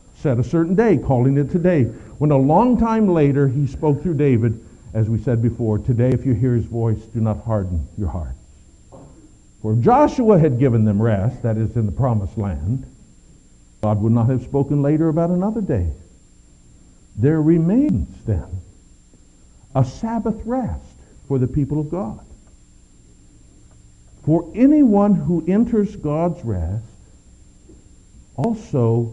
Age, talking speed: 60-79, 145 wpm